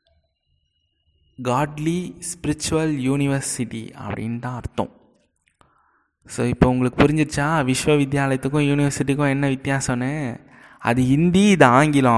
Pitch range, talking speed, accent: 120-145 Hz, 95 wpm, native